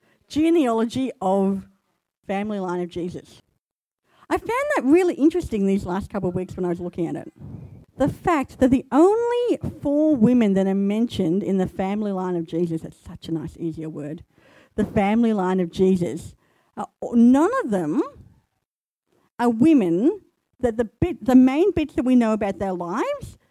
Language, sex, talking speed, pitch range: English, female, 170 wpm, 190-280 Hz